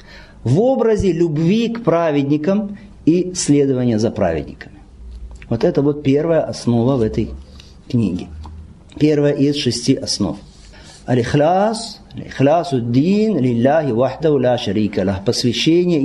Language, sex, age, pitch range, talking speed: Russian, male, 50-69, 120-160 Hz, 80 wpm